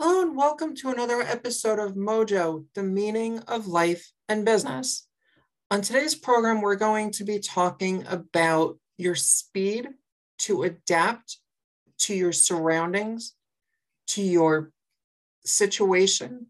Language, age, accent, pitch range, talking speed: English, 40-59, American, 180-235 Hz, 120 wpm